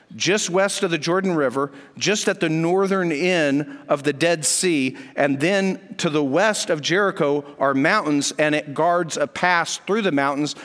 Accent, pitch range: American, 150-195 Hz